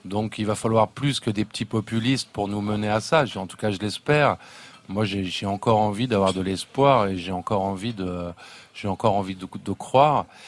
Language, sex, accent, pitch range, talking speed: French, male, French, 105-125 Hz, 220 wpm